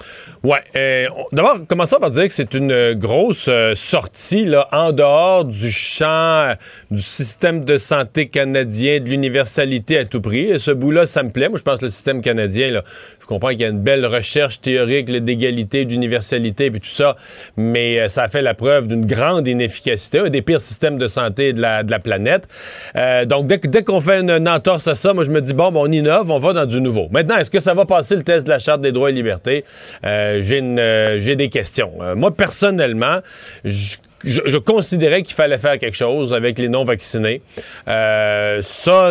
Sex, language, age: male, French, 40-59